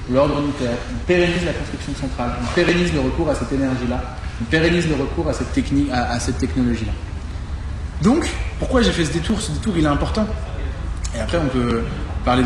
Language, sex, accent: French, male, French